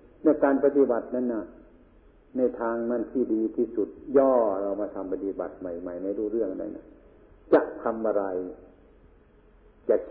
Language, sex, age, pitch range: Thai, male, 60-79, 105-170 Hz